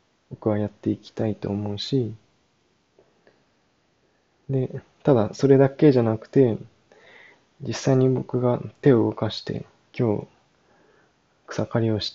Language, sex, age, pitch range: Japanese, male, 20-39, 110-135 Hz